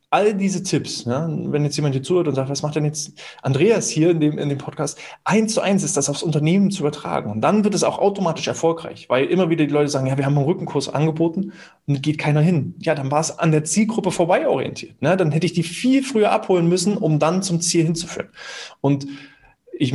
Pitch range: 140-175 Hz